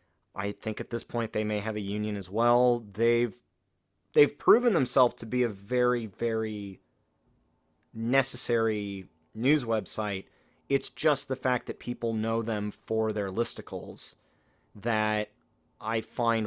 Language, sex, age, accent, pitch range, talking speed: English, male, 30-49, American, 100-120 Hz, 140 wpm